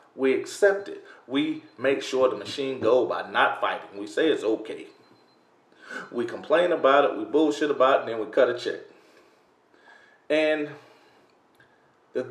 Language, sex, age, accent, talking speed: English, male, 30-49, American, 155 wpm